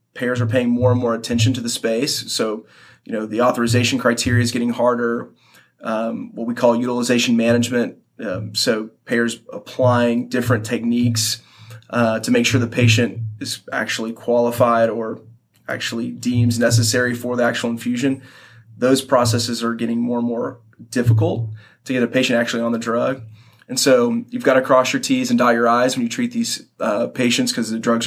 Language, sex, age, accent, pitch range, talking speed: English, male, 30-49, American, 115-125 Hz, 180 wpm